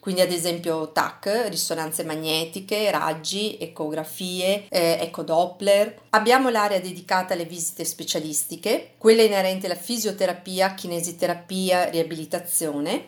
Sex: female